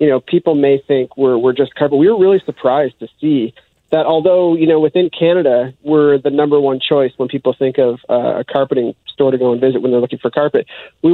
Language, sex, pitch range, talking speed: English, male, 130-155 Hz, 235 wpm